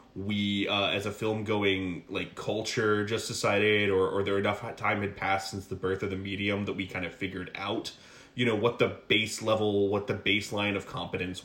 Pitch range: 95-115 Hz